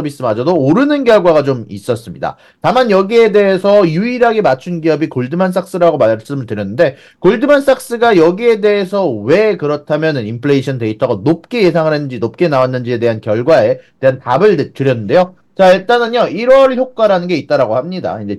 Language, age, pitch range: Korean, 30-49, 130-200 Hz